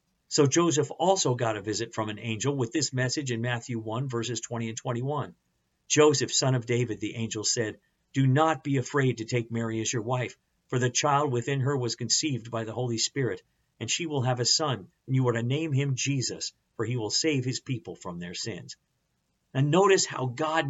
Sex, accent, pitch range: male, American, 120-155 Hz